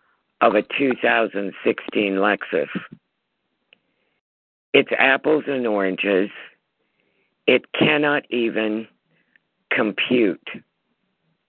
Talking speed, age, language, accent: 65 wpm, 50-69, English, American